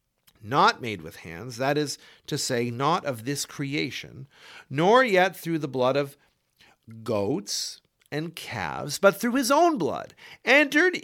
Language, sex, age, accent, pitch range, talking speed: English, male, 50-69, American, 135-180 Hz, 145 wpm